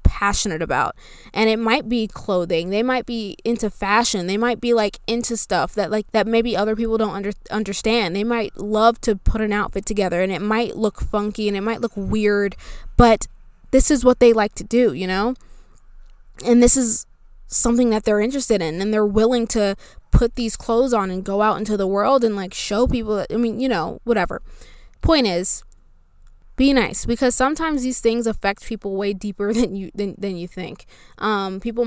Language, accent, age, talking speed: English, American, 20-39, 200 wpm